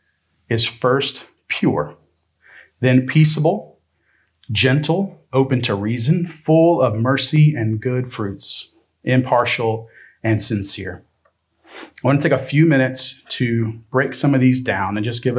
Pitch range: 110-145 Hz